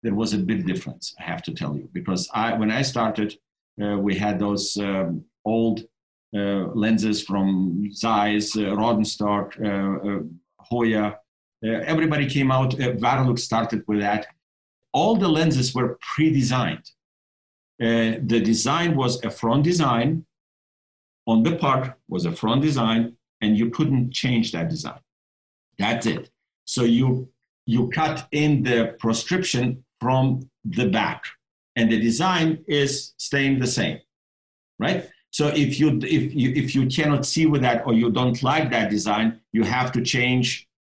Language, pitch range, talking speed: English, 110-135 Hz, 150 wpm